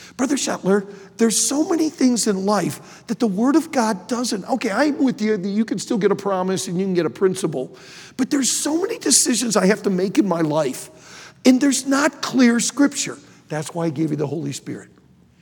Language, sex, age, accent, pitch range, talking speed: English, male, 50-69, American, 150-230 Hz, 215 wpm